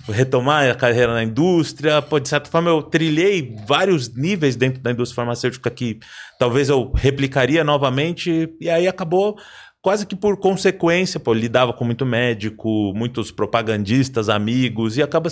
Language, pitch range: Portuguese, 110-155 Hz